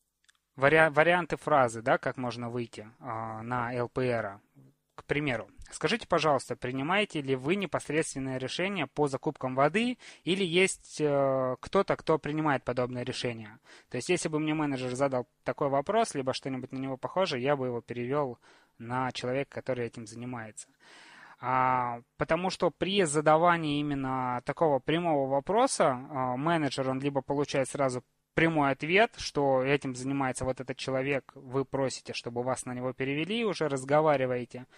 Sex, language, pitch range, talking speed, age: male, Russian, 130-155 Hz, 145 wpm, 20-39